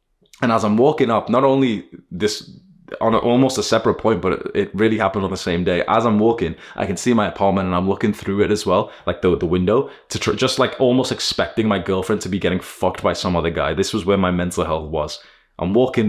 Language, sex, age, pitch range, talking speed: English, male, 20-39, 90-110 Hz, 245 wpm